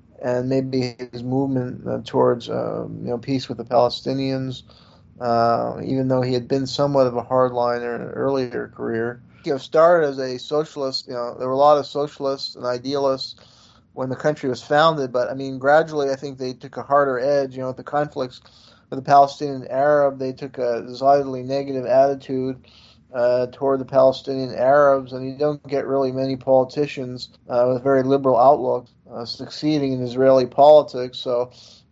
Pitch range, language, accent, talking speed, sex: 125-140 Hz, English, American, 180 wpm, male